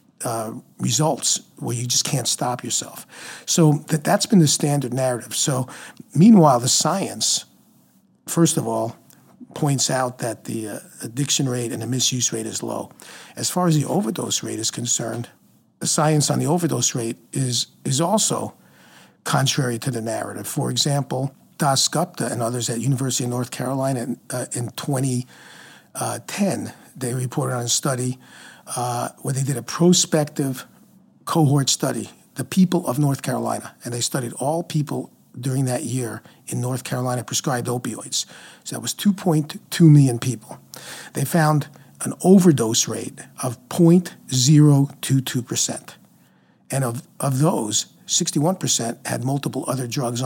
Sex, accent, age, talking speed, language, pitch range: male, American, 50-69, 145 wpm, English, 120-155 Hz